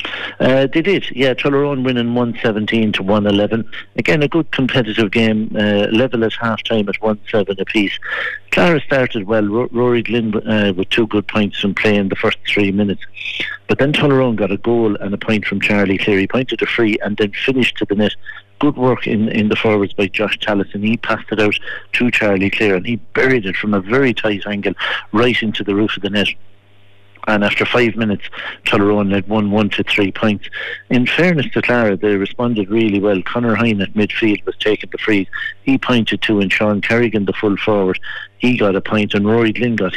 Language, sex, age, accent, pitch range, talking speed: English, male, 60-79, British, 100-115 Hz, 205 wpm